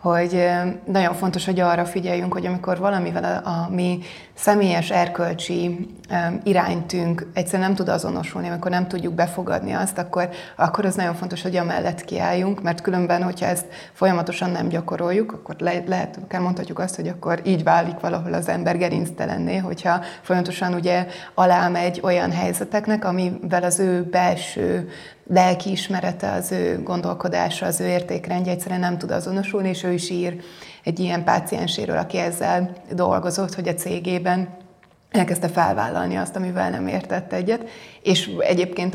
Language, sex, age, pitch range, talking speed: Hungarian, female, 20-39, 175-190 Hz, 150 wpm